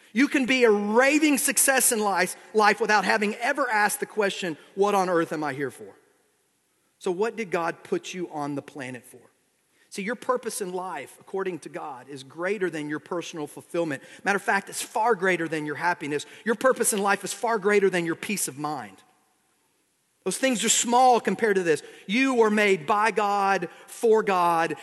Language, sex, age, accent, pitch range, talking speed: English, male, 40-59, American, 160-220 Hz, 195 wpm